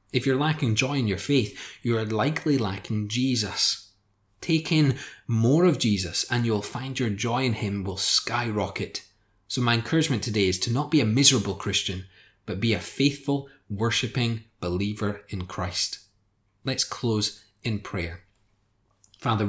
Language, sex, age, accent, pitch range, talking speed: English, male, 30-49, British, 100-125 Hz, 150 wpm